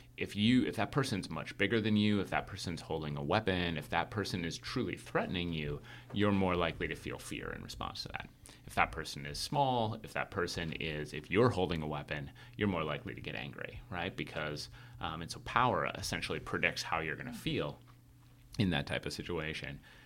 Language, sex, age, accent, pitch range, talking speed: English, male, 30-49, American, 75-105 Hz, 210 wpm